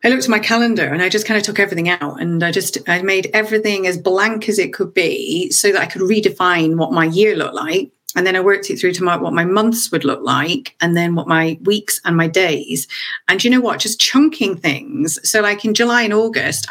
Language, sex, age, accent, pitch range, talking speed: English, female, 40-59, British, 170-225 Hz, 250 wpm